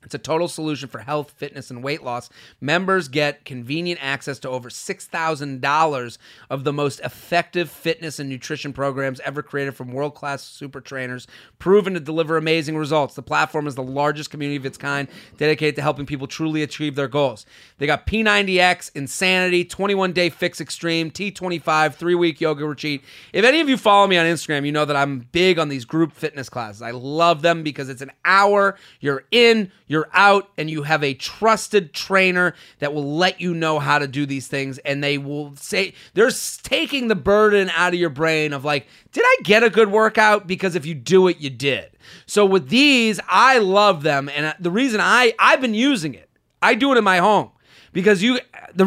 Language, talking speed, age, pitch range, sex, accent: English, 195 wpm, 30-49, 140-195 Hz, male, American